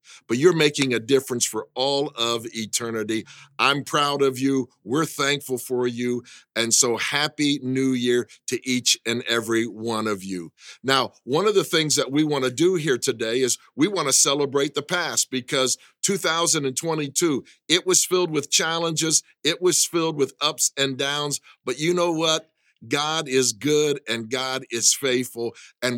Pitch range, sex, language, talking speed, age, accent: 125-155 Hz, male, English, 170 wpm, 50-69, American